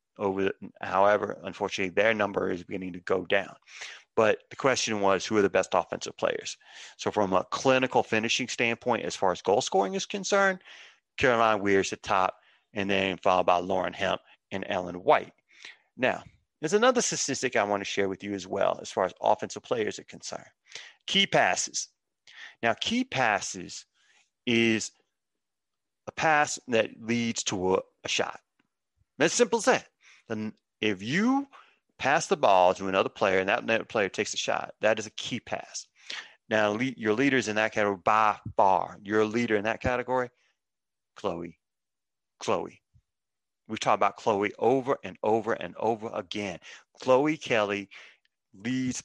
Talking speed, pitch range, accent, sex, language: 165 wpm, 100-160 Hz, American, male, English